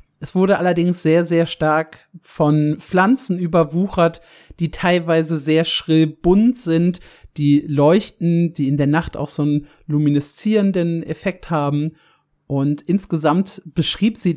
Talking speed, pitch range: 130 wpm, 150-185 Hz